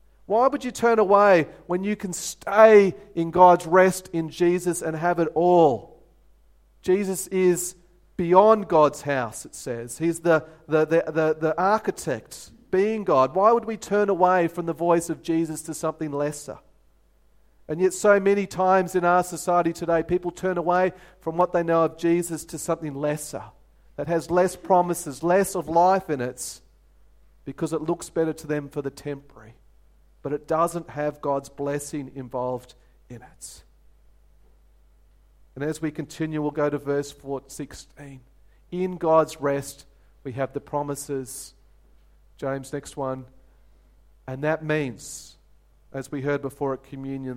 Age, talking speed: 40-59, 155 wpm